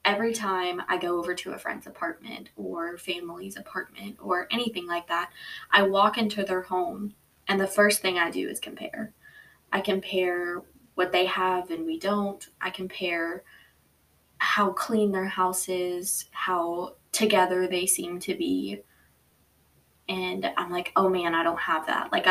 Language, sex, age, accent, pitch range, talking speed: English, female, 20-39, American, 170-200 Hz, 160 wpm